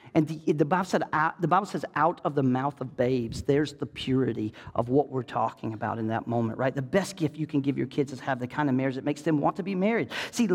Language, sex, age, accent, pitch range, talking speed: English, male, 40-59, American, 165-270 Hz, 285 wpm